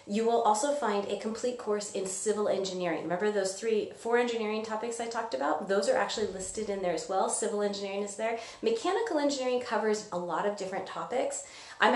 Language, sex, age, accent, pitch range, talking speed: English, female, 30-49, American, 185-240 Hz, 200 wpm